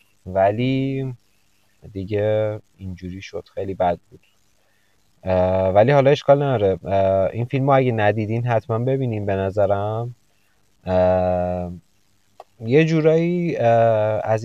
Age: 30-49